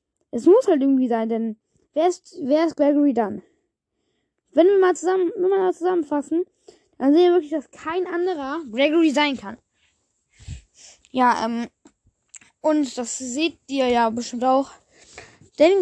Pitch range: 250-330 Hz